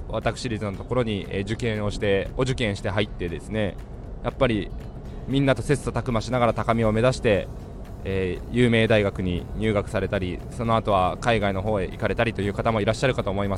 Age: 20-39